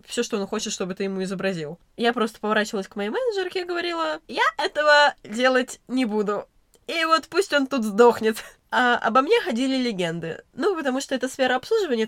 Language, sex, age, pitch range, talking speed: Russian, female, 20-39, 210-275 Hz, 190 wpm